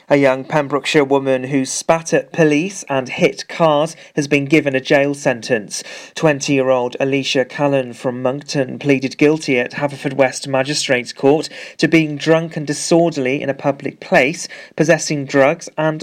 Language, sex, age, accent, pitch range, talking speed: English, male, 40-59, British, 135-160 Hz, 155 wpm